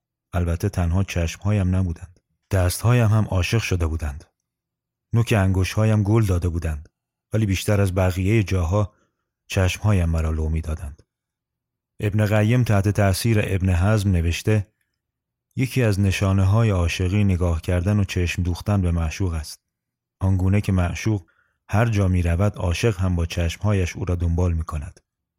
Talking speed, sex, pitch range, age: 140 wpm, male, 85-105 Hz, 30-49